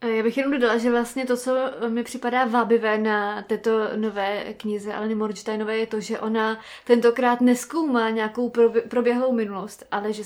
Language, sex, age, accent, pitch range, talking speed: Czech, female, 20-39, native, 210-240 Hz, 165 wpm